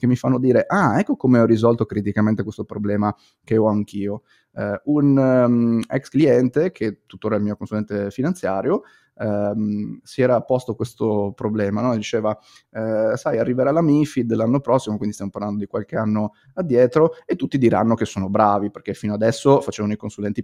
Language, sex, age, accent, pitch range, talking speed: Italian, male, 30-49, native, 105-120 Hz, 165 wpm